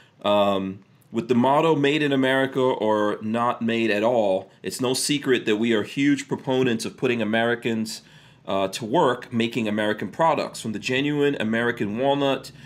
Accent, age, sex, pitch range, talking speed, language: American, 40-59, male, 110-135 Hz, 160 wpm, English